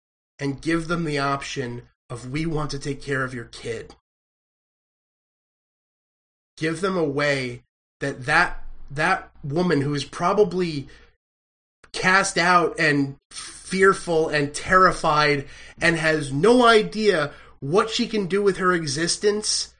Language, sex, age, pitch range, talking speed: English, male, 30-49, 130-165 Hz, 125 wpm